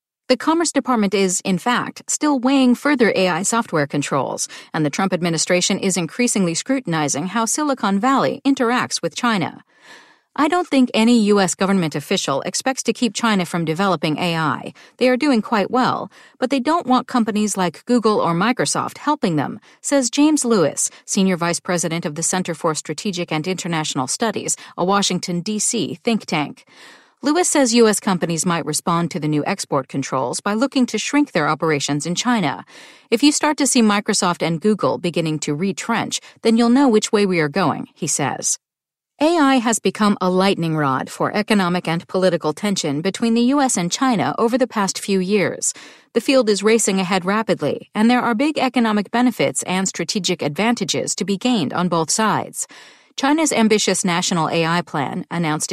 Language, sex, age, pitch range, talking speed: English, female, 40-59, 170-245 Hz, 175 wpm